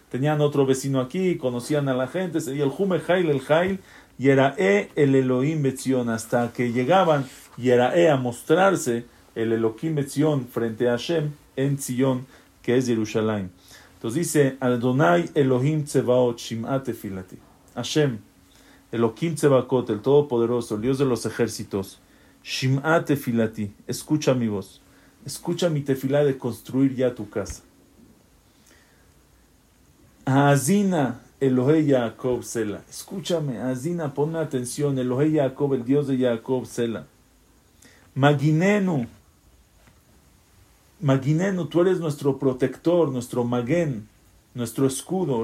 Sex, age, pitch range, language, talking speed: male, 40-59, 120-155 Hz, English, 120 wpm